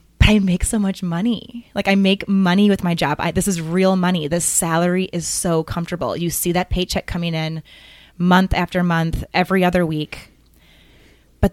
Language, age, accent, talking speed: English, 20-39, American, 180 wpm